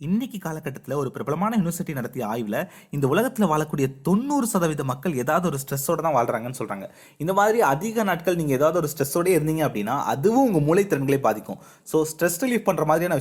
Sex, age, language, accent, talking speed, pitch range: male, 20-39, Tamil, native, 175 wpm, 140-195 Hz